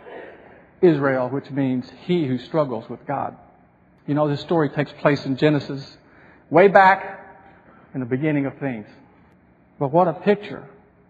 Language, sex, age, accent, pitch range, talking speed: English, male, 50-69, American, 140-195 Hz, 145 wpm